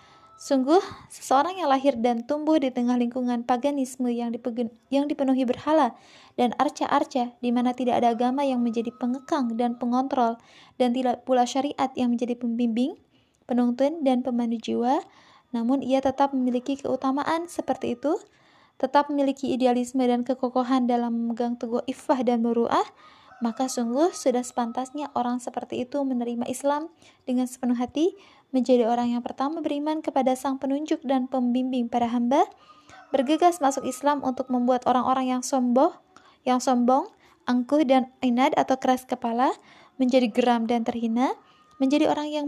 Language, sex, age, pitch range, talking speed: Indonesian, female, 20-39, 245-285 Hz, 140 wpm